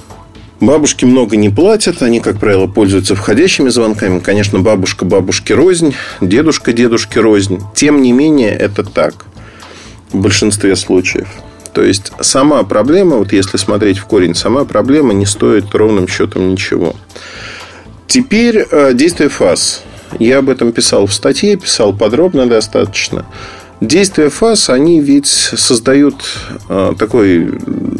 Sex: male